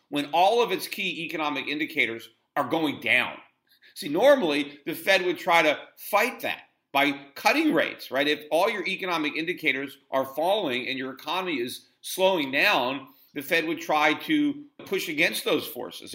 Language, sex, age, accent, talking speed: English, male, 40-59, American, 165 wpm